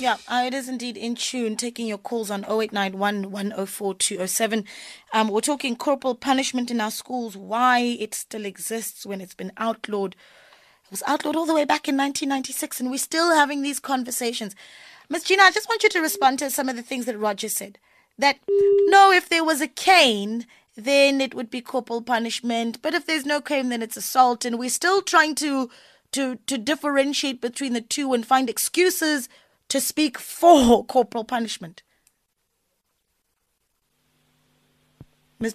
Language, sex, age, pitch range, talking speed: English, female, 20-39, 220-280 Hz, 170 wpm